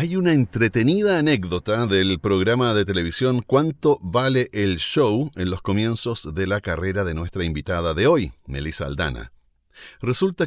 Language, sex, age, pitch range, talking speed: Spanish, male, 40-59, 90-130 Hz, 150 wpm